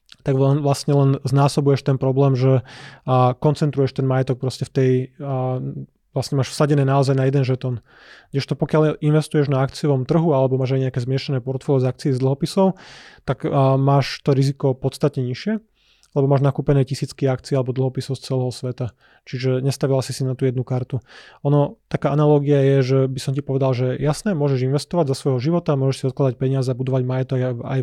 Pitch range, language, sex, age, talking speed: 130-145 Hz, Slovak, male, 20-39, 175 wpm